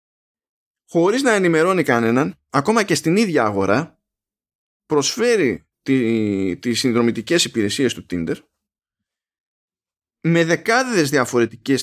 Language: Greek